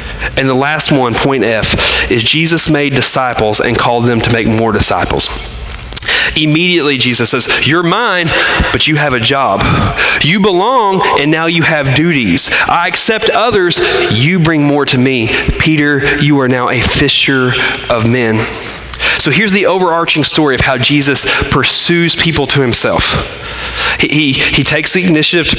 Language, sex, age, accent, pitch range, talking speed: English, male, 30-49, American, 120-150 Hz, 160 wpm